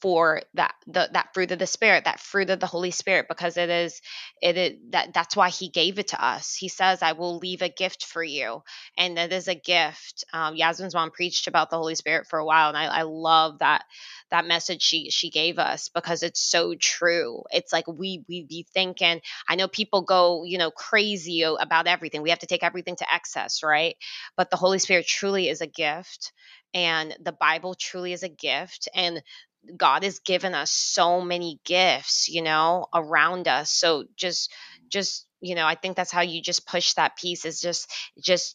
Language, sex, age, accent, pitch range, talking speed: English, female, 20-39, American, 160-180 Hz, 210 wpm